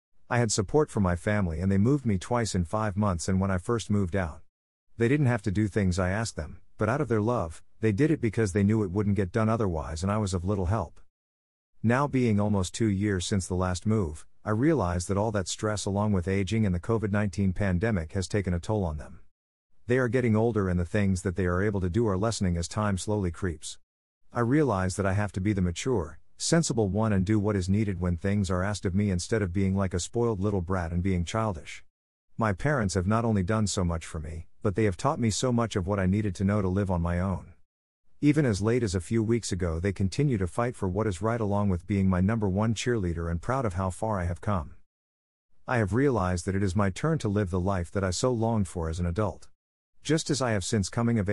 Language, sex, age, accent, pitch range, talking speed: English, male, 50-69, American, 90-110 Hz, 255 wpm